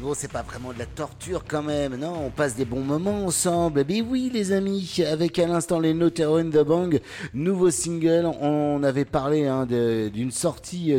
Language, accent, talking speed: French, French, 195 wpm